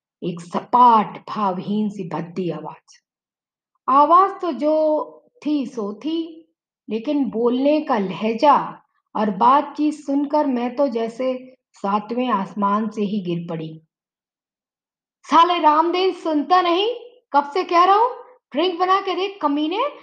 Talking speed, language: 130 wpm, Hindi